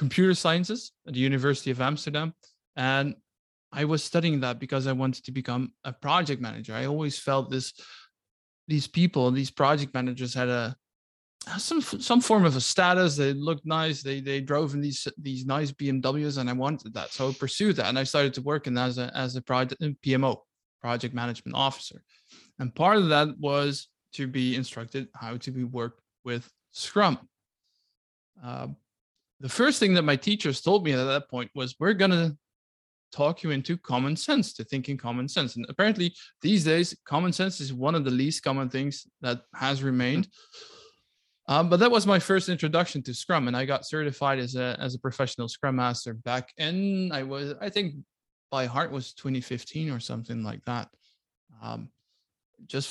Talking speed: 185 wpm